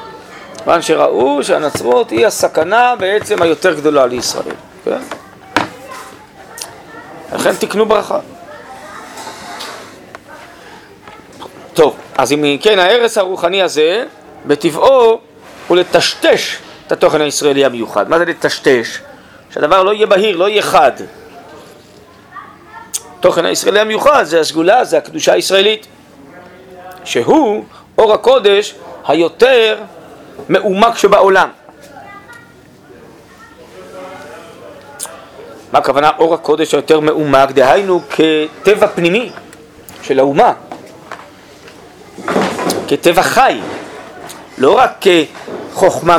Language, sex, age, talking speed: Hebrew, male, 40-59, 85 wpm